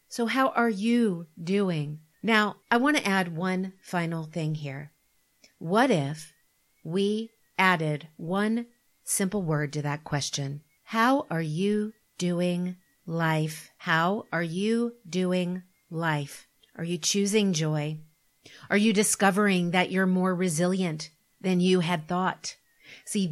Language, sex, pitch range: English, female, 165-205 Hz